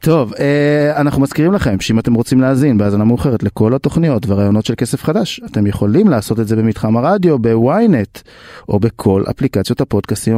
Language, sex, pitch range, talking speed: Hebrew, male, 105-145 Hz, 160 wpm